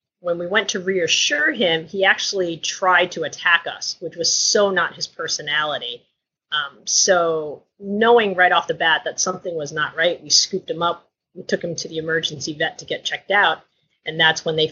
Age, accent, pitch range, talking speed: 30-49, American, 160-210 Hz, 200 wpm